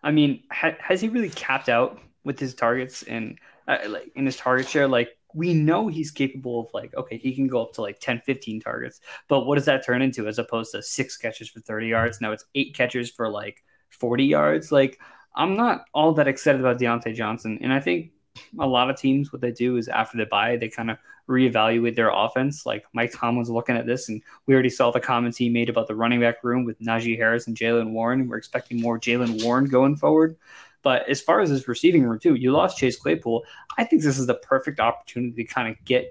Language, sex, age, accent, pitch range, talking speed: English, male, 20-39, American, 115-135 Hz, 240 wpm